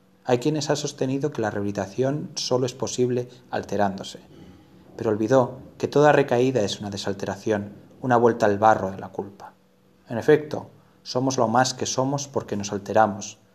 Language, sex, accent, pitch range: Spanish, male, Spanish, 105-125 Hz